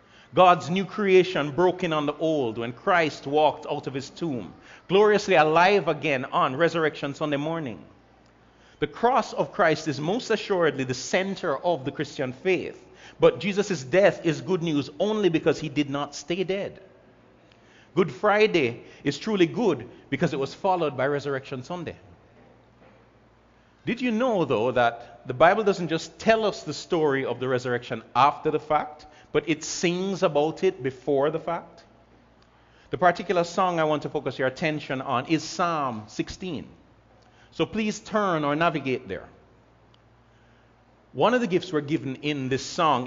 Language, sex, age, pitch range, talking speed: English, male, 40-59, 140-180 Hz, 160 wpm